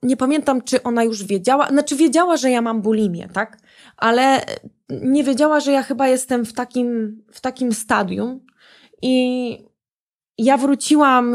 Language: Polish